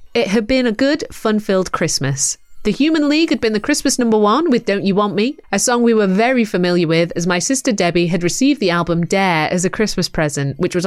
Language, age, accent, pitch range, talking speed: English, 30-49, British, 170-250 Hz, 235 wpm